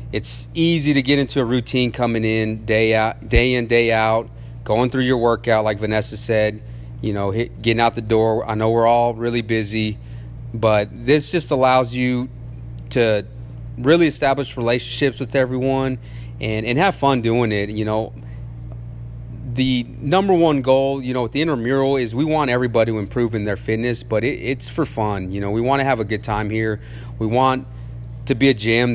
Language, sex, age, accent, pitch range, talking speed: English, male, 30-49, American, 110-130 Hz, 190 wpm